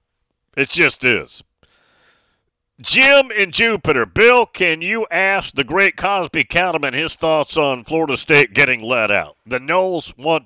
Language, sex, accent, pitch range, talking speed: English, male, American, 120-190 Hz, 145 wpm